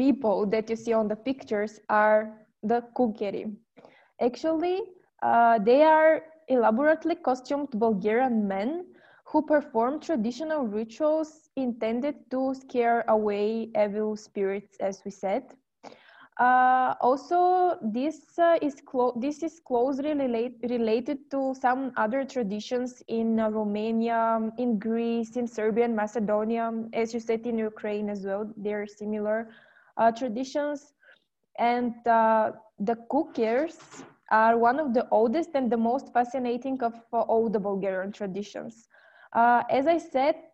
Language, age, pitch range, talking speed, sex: Romanian, 20-39, 225-280 Hz, 130 wpm, female